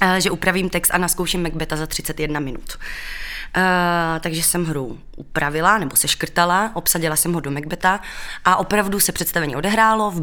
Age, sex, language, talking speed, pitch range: 20-39, female, Czech, 165 wpm, 160-200 Hz